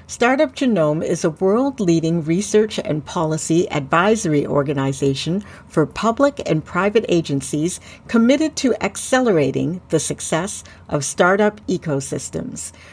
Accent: American